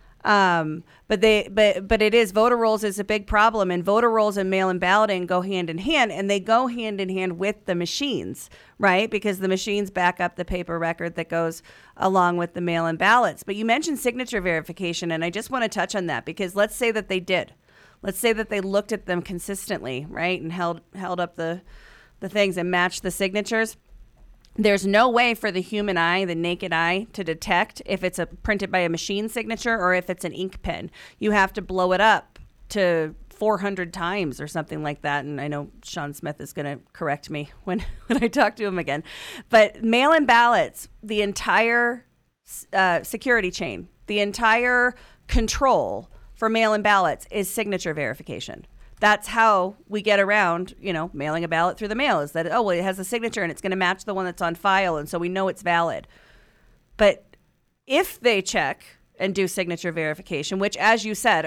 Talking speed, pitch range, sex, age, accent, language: 205 wpm, 175-215 Hz, female, 40-59, American, English